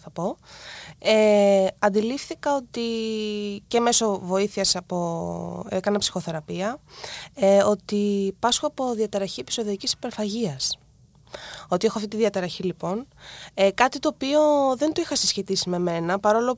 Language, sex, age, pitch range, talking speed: Greek, female, 20-39, 190-255 Hz, 125 wpm